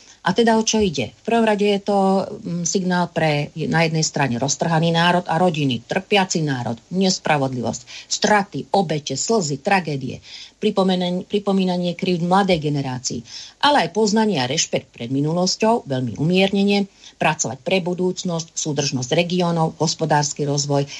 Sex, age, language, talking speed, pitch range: female, 40-59, Slovak, 135 wpm, 145-200 Hz